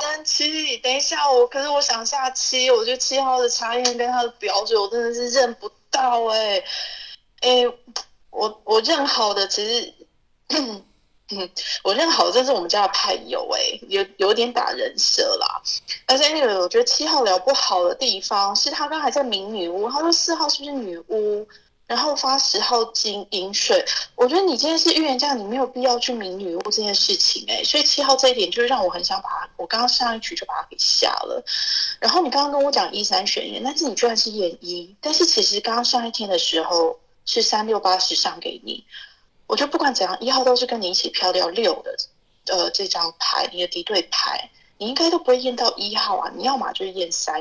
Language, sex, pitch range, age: Chinese, female, 220-320 Hz, 20-39